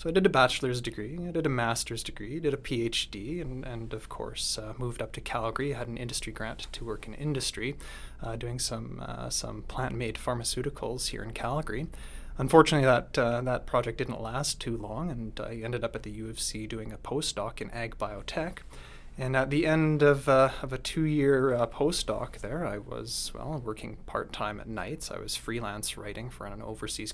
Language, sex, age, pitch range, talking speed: English, male, 20-39, 115-140 Hz, 210 wpm